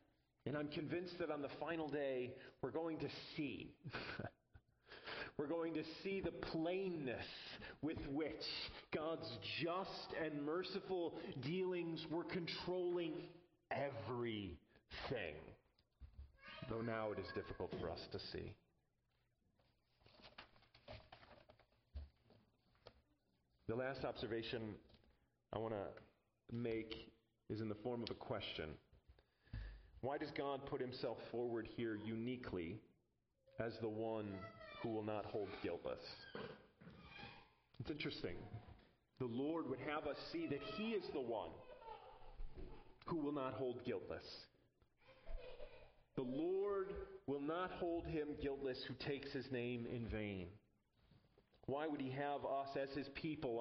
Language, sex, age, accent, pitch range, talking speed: English, male, 40-59, American, 115-165 Hz, 120 wpm